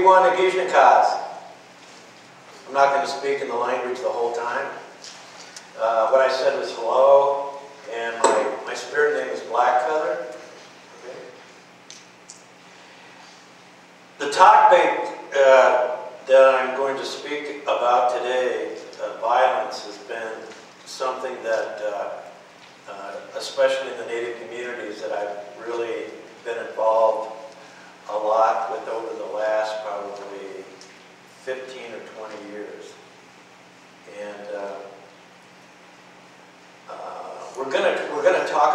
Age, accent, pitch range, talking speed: 50-69, American, 110-135 Hz, 115 wpm